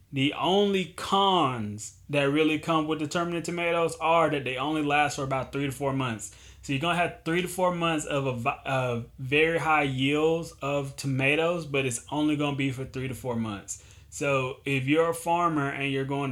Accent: American